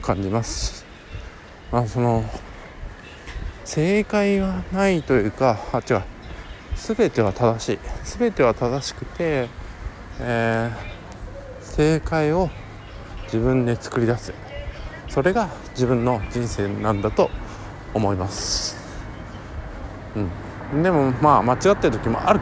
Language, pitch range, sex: Japanese, 105-140 Hz, male